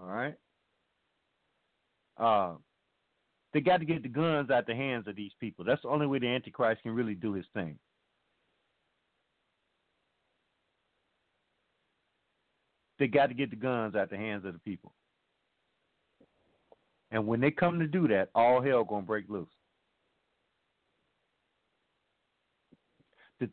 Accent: American